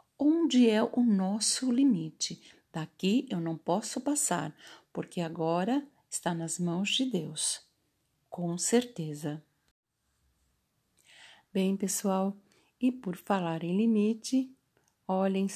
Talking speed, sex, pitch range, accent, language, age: 105 wpm, female, 180-245 Hz, Brazilian, Portuguese, 50-69